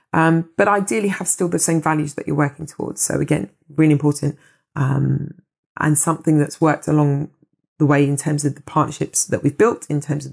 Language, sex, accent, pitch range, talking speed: English, female, British, 155-200 Hz, 205 wpm